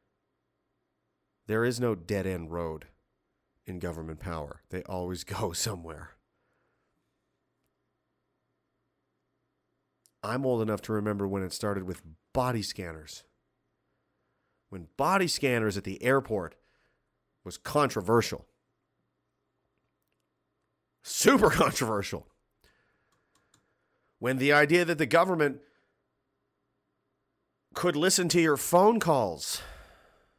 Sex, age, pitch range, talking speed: male, 40-59, 100-145 Hz, 90 wpm